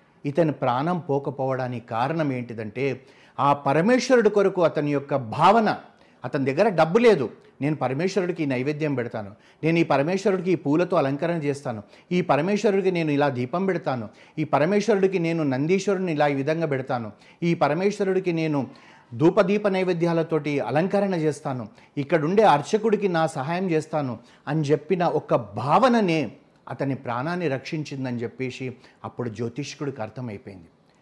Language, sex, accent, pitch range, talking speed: Telugu, male, native, 130-180 Hz, 125 wpm